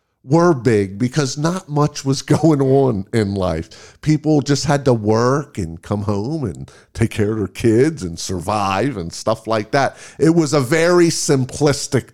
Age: 50-69